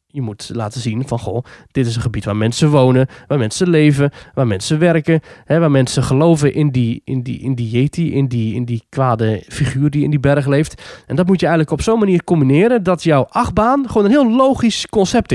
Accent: Dutch